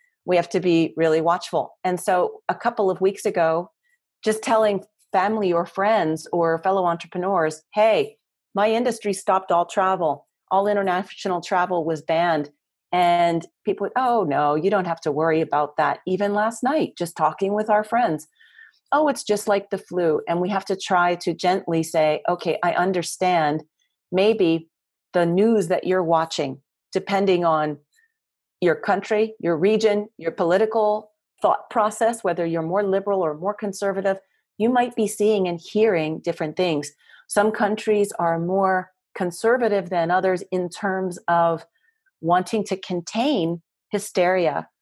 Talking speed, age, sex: 150 wpm, 40-59, female